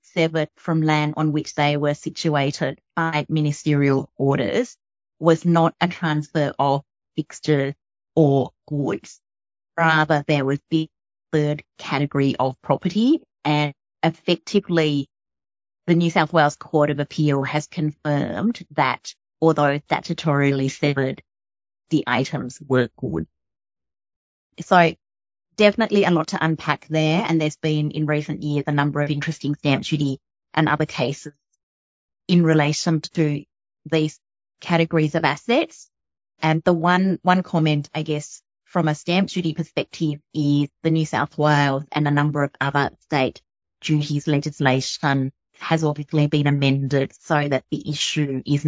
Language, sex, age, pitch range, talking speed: English, female, 30-49, 140-160 Hz, 135 wpm